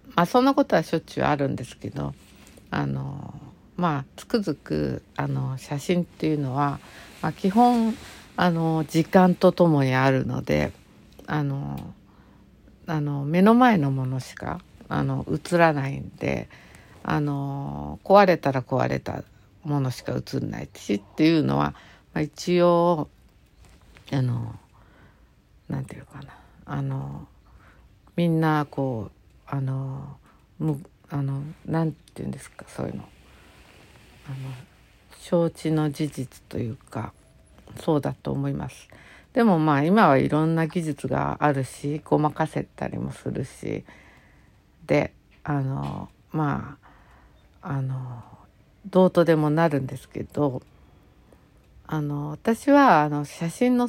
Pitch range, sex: 110-165 Hz, female